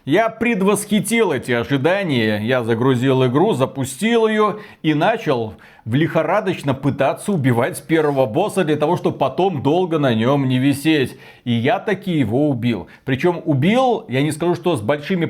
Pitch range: 130-175 Hz